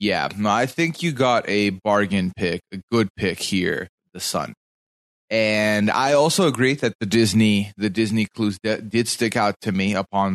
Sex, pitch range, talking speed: male, 100-130 Hz, 175 wpm